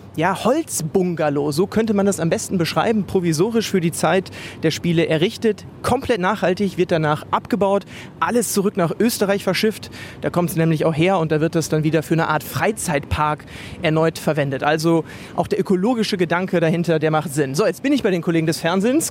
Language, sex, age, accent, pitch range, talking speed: German, male, 30-49, German, 155-200 Hz, 195 wpm